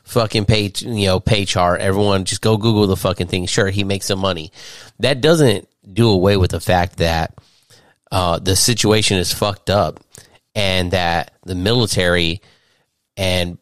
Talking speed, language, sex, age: 165 wpm, English, male, 30-49